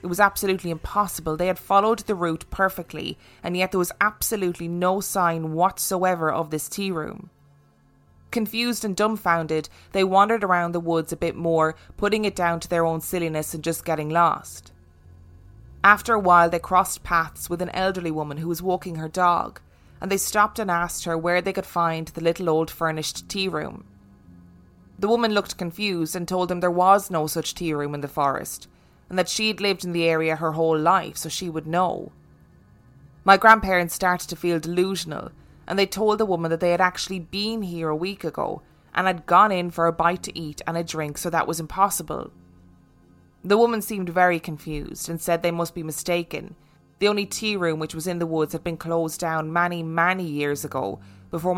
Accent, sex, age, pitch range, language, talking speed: Irish, female, 20-39, 160-185 Hz, English, 200 wpm